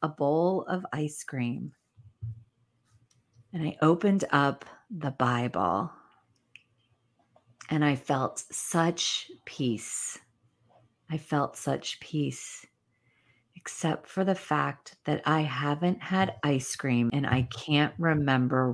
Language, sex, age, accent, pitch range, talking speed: English, female, 40-59, American, 135-225 Hz, 110 wpm